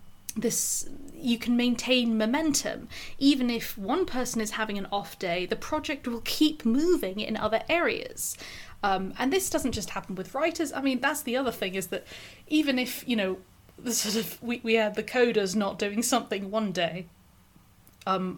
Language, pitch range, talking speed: English, 195-255 Hz, 185 wpm